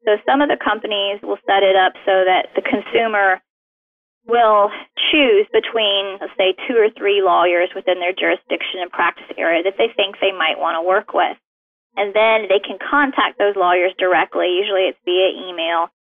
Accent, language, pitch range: American, English, 185-245 Hz